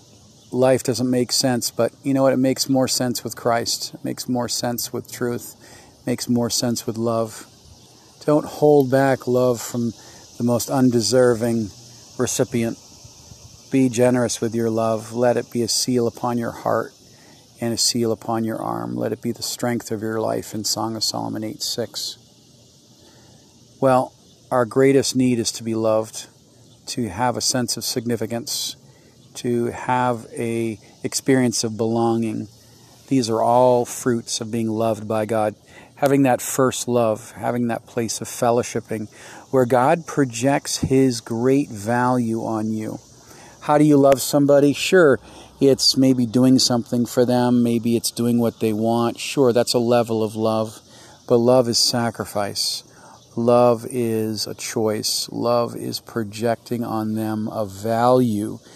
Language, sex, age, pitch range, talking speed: English, male, 40-59, 115-125 Hz, 155 wpm